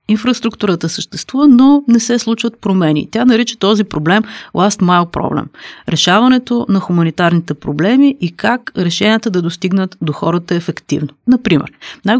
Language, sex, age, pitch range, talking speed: Bulgarian, female, 30-49, 165-225 Hz, 140 wpm